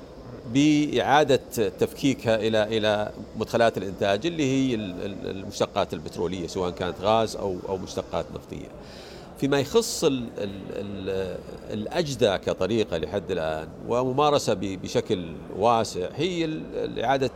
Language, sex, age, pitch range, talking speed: Arabic, male, 50-69, 105-135 Hz, 95 wpm